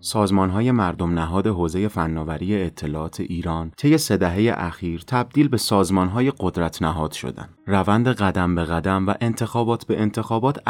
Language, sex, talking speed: Persian, male, 135 wpm